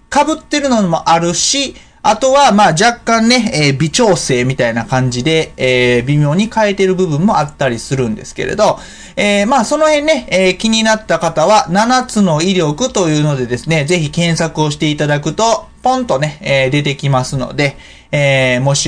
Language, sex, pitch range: Japanese, male, 140-220 Hz